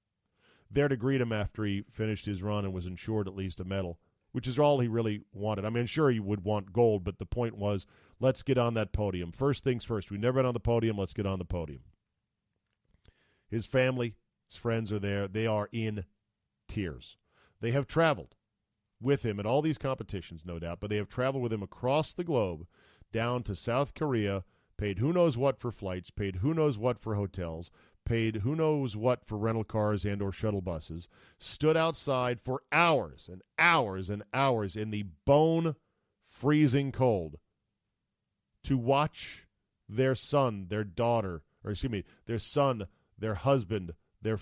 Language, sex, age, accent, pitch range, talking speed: English, male, 40-59, American, 100-130 Hz, 180 wpm